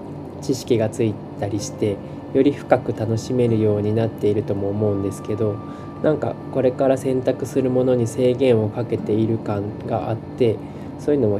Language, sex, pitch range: Japanese, male, 105-130 Hz